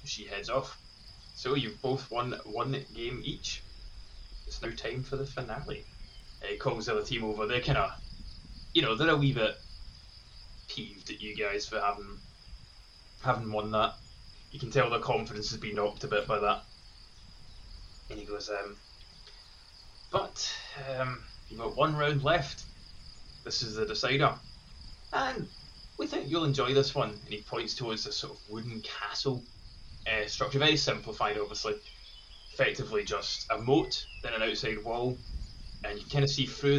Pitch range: 110-150 Hz